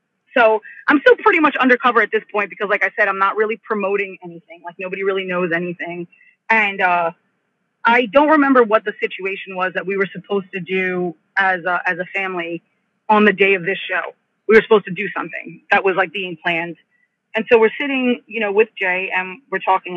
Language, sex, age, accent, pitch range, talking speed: English, female, 30-49, American, 185-245 Hz, 215 wpm